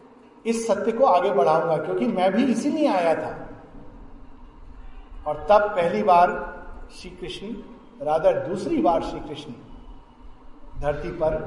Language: Hindi